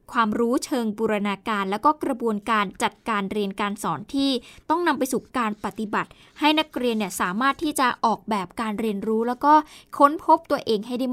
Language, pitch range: Thai, 205-270 Hz